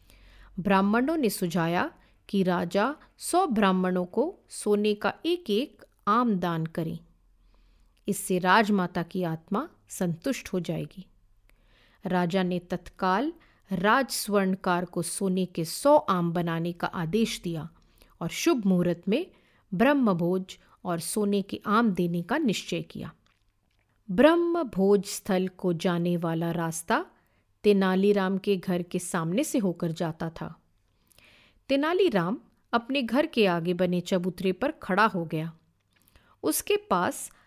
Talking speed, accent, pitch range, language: 125 wpm, native, 170-225 Hz, Hindi